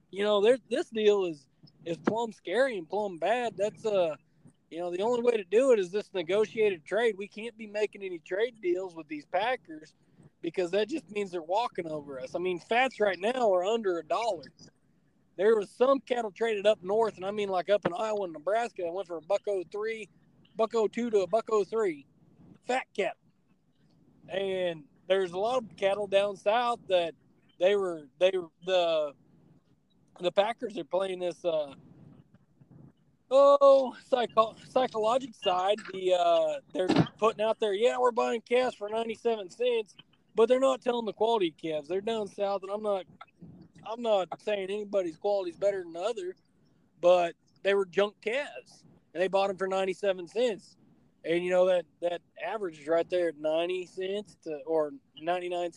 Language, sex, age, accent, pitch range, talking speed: English, male, 20-39, American, 175-225 Hz, 180 wpm